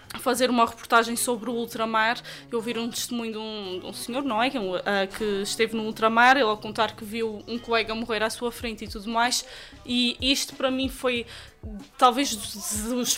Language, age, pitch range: Portuguese, 20-39, 230-260 Hz